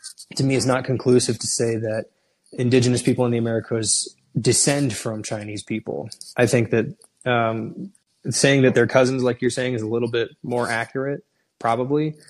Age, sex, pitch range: 20-39, male, 115-125 Hz